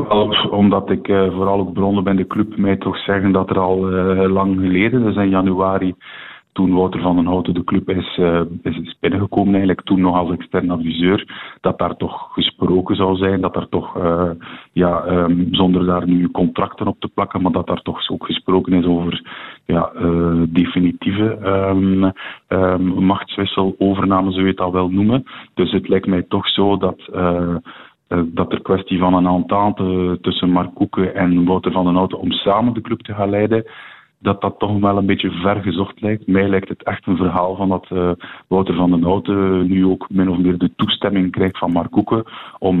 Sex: male